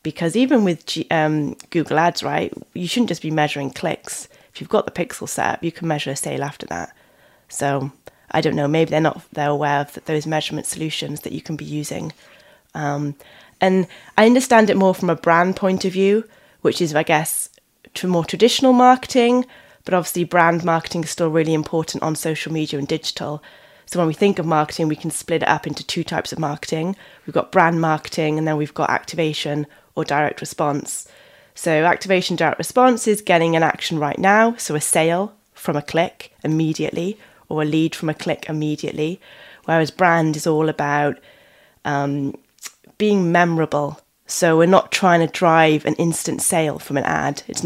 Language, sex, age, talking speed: English, female, 20-39, 190 wpm